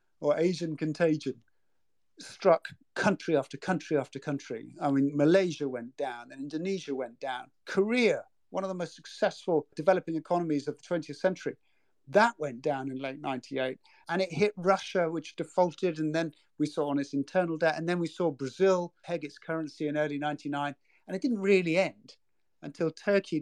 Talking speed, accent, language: 175 wpm, British, English